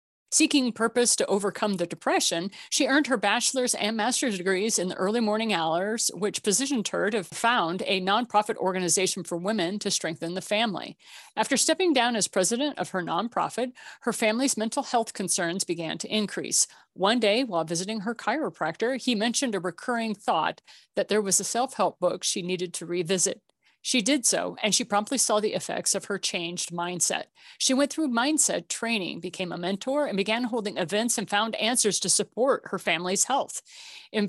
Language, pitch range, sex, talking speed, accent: English, 185-245 Hz, female, 180 wpm, American